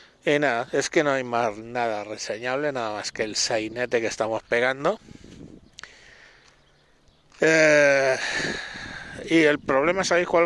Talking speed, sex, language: 130 wpm, male, Spanish